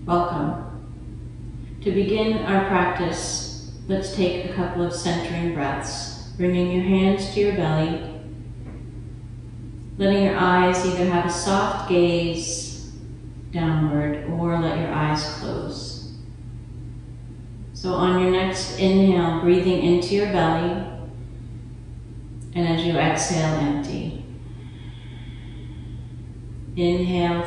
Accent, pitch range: American, 120-175 Hz